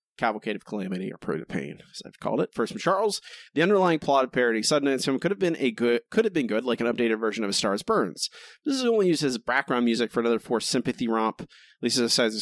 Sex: male